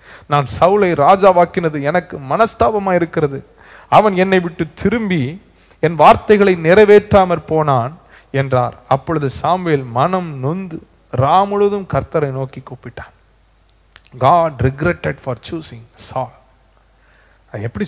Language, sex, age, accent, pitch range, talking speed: Tamil, male, 30-49, native, 135-180 Hz, 70 wpm